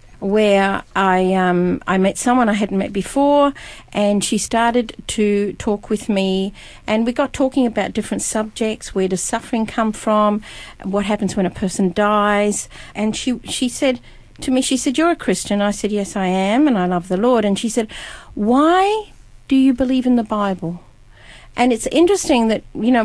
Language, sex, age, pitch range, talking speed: English, female, 50-69, 205-275 Hz, 185 wpm